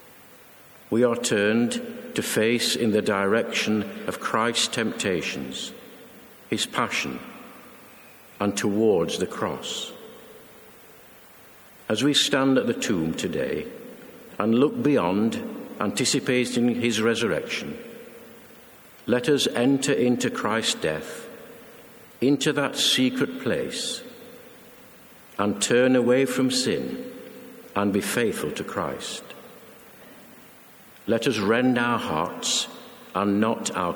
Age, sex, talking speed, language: 60-79, male, 100 wpm, English